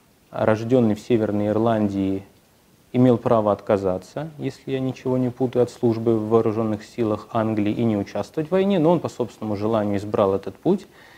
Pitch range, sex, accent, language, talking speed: 110-140 Hz, male, native, Russian, 165 wpm